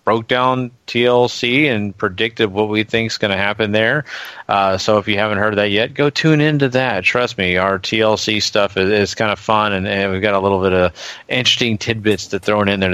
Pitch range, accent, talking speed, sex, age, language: 100-125 Hz, American, 230 wpm, male, 30-49, English